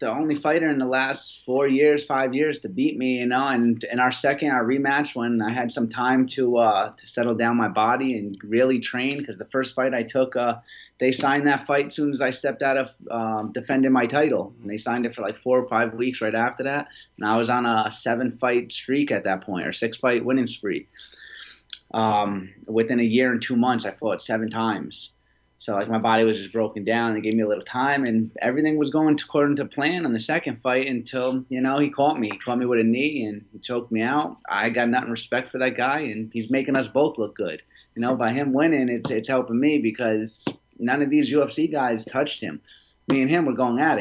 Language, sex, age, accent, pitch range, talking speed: English, male, 30-49, American, 115-135 Hz, 240 wpm